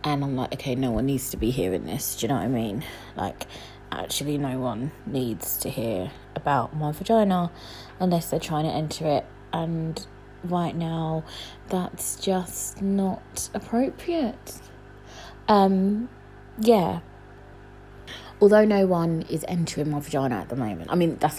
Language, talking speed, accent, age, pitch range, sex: English, 155 wpm, British, 20-39, 145-205 Hz, female